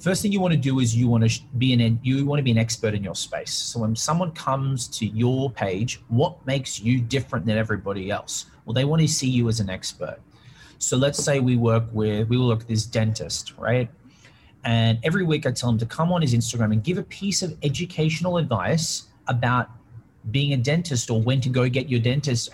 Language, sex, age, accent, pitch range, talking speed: English, male, 30-49, Australian, 115-145 Hz, 225 wpm